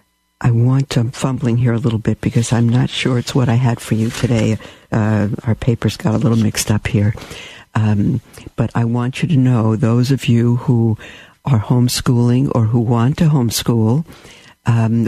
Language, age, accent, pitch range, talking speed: English, 60-79, American, 110-130 Hz, 190 wpm